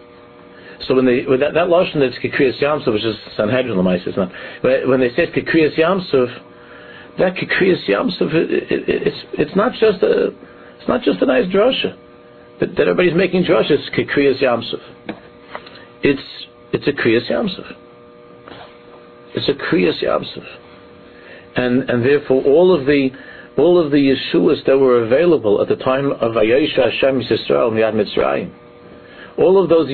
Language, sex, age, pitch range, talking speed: English, male, 60-79, 110-145 Hz, 160 wpm